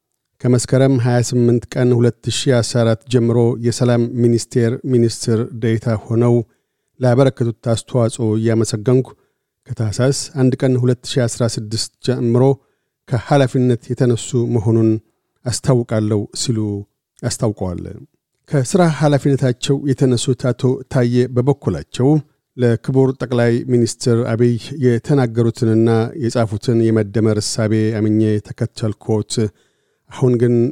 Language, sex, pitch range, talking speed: Amharic, male, 115-130 Hz, 80 wpm